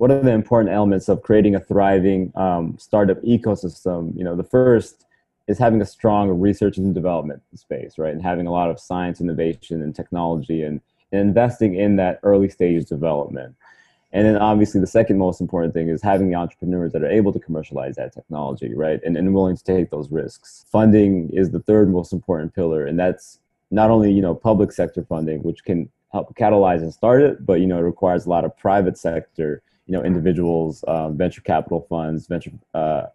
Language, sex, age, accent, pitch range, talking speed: English, male, 30-49, American, 85-100 Hz, 200 wpm